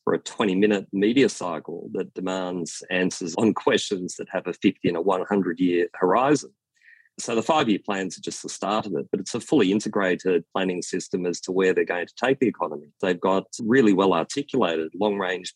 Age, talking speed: 40-59, 190 wpm